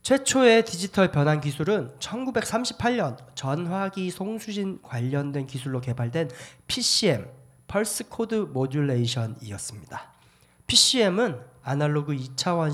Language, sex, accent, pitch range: Korean, male, native, 130-200 Hz